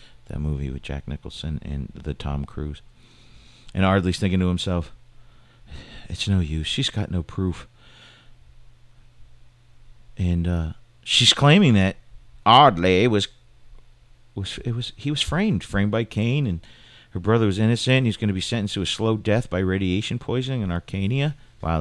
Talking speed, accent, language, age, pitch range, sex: 155 wpm, American, English, 40-59, 90-120 Hz, male